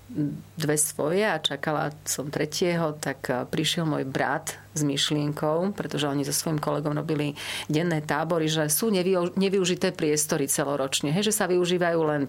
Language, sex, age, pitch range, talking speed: Slovak, female, 40-59, 145-170 Hz, 145 wpm